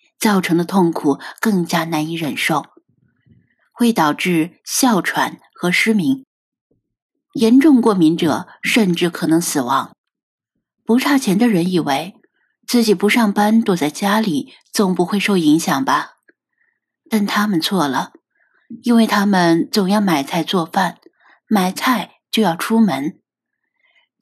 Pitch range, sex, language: 175-235 Hz, female, Chinese